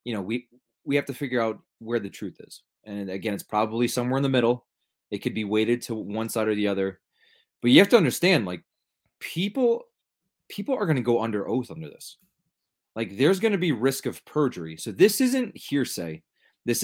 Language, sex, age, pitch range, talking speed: English, male, 20-39, 100-130 Hz, 210 wpm